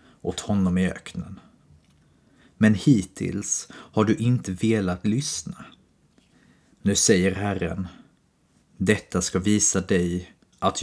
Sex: male